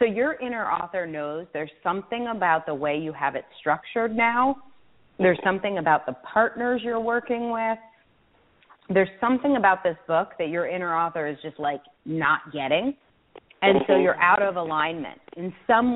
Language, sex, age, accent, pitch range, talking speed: English, female, 30-49, American, 160-225 Hz, 170 wpm